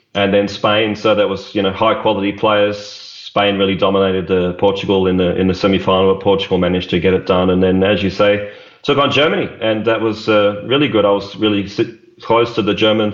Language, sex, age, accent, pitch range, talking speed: English, male, 30-49, Australian, 95-110 Hz, 220 wpm